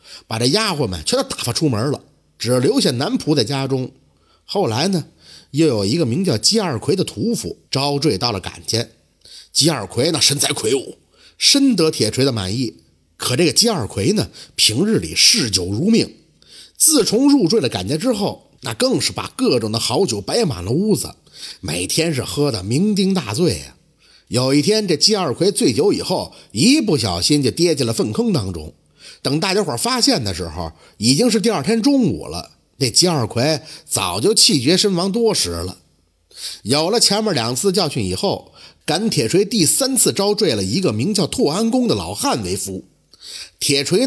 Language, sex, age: Chinese, male, 50-69